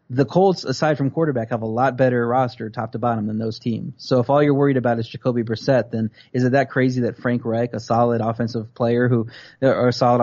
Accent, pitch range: American, 115-130 Hz